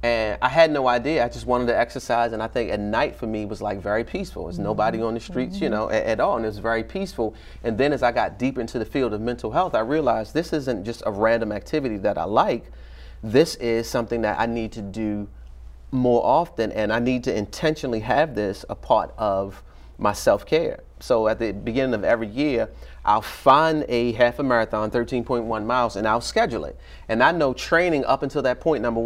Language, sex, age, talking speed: English, male, 30-49, 225 wpm